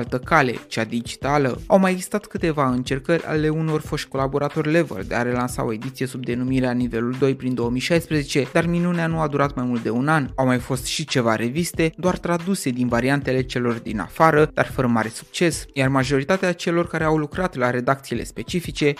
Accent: native